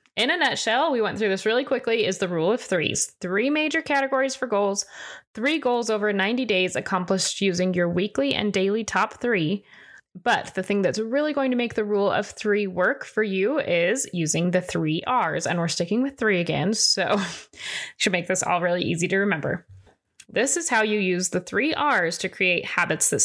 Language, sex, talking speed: English, female, 205 wpm